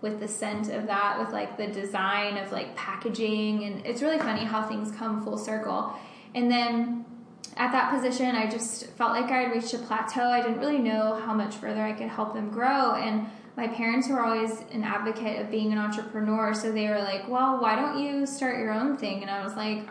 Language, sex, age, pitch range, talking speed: English, female, 10-29, 215-240 Hz, 225 wpm